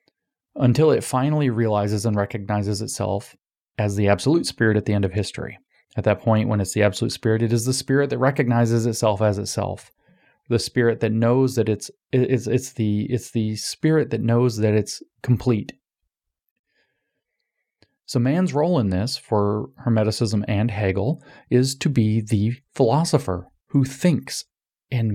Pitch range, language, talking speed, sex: 105-130 Hz, English, 155 wpm, male